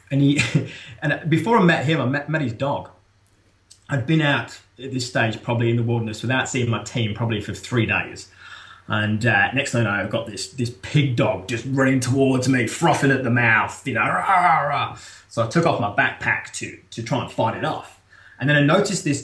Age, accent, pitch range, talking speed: 20-39, British, 110-150 Hz, 230 wpm